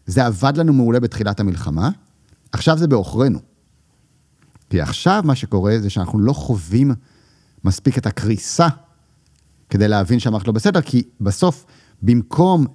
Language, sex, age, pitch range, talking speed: Hebrew, male, 40-59, 110-135 Hz, 130 wpm